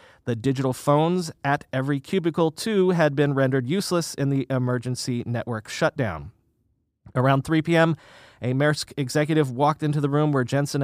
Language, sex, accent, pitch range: English, male, American, 125-160 Hz